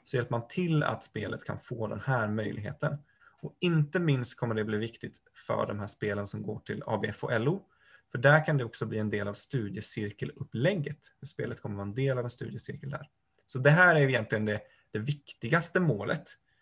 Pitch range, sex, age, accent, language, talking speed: 115-155 Hz, male, 30-49, native, Swedish, 200 wpm